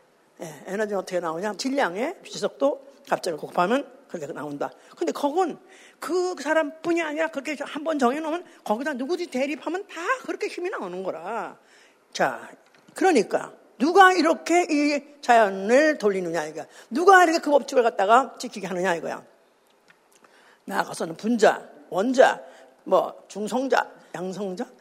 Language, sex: Korean, female